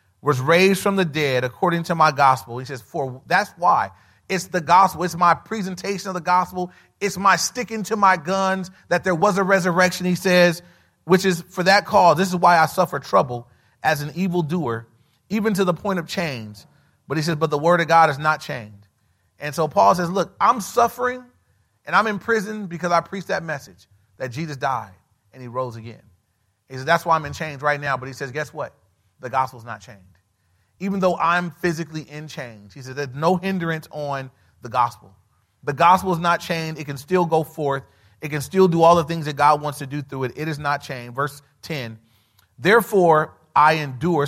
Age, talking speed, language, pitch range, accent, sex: 30-49, 210 wpm, English, 130-180 Hz, American, male